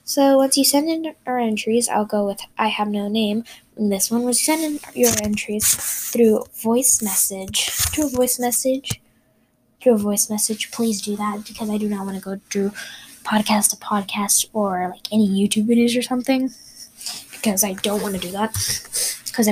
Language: English